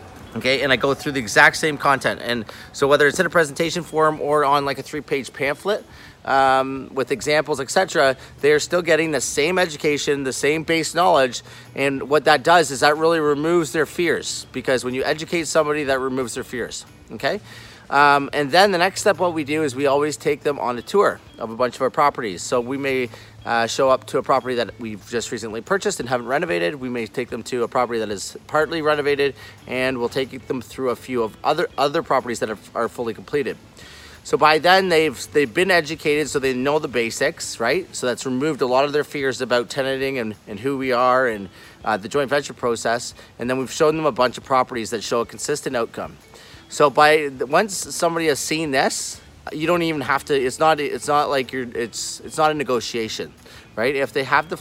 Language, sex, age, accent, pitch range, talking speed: English, male, 30-49, American, 125-155 Hz, 220 wpm